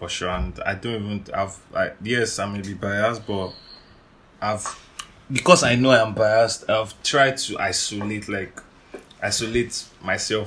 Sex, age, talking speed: male, 20-39, 155 wpm